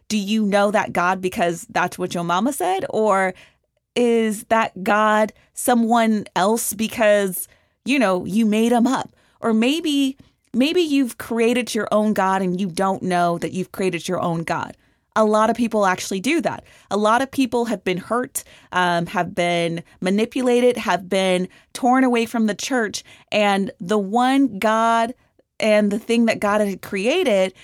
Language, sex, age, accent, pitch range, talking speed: English, female, 30-49, American, 185-235 Hz, 170 wpm